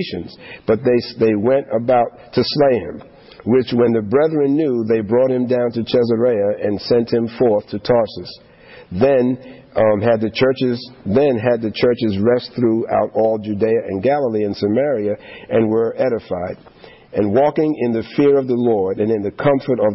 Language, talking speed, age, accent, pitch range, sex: English, 175 wpm, 50-69, American, 110-130 Hz, male